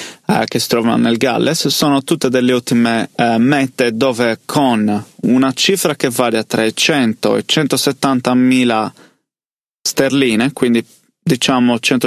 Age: 30-49